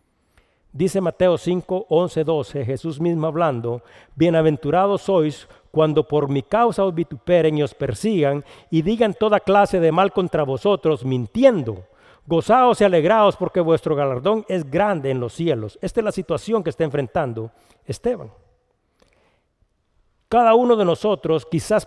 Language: Spanish